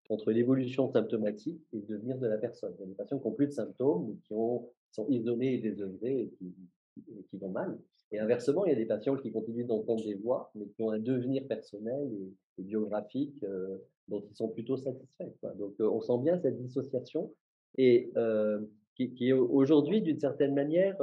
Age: 40-59